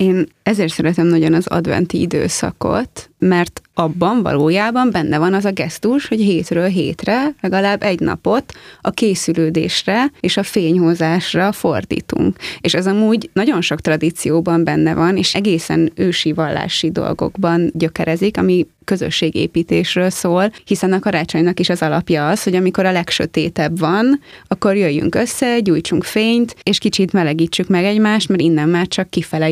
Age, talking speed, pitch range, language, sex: 20-39, 145 wpm, 165-205 Hz, Hungarian, female